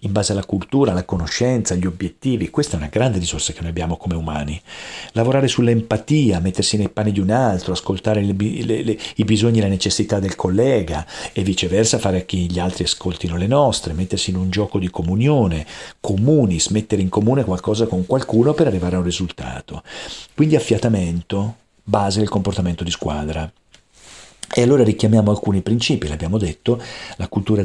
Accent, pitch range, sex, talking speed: native, 90-115 Hz, male, 175 wpm